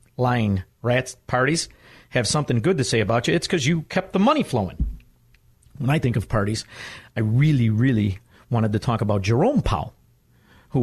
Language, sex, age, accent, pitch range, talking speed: English, male, 50-69, American, 100-135 Hz, 175 wpm